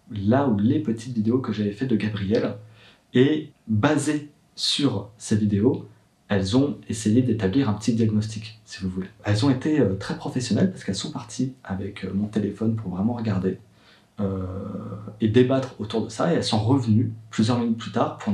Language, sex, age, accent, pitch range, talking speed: French, male, 30-49, French, 100-125 Hz, 180 wpm